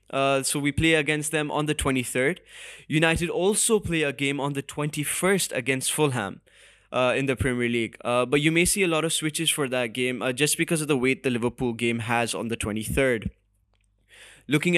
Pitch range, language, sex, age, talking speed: 120-150 Hz, English, male, 10-29, 205 wpm